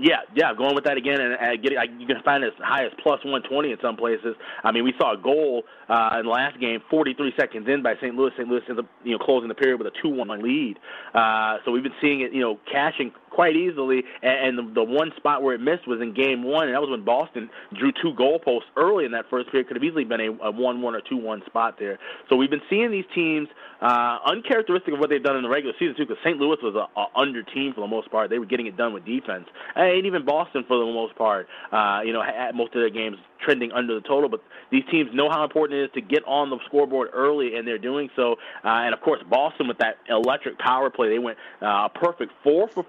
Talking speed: 265 wpm